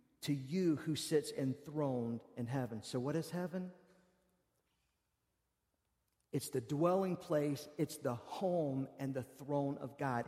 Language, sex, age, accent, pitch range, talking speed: English, male, 50-69, American, 155-240 Hz, 135 wpm